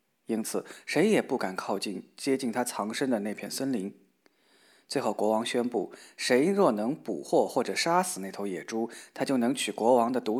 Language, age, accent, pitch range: Chinese, 20-39, native, 110-160 Hz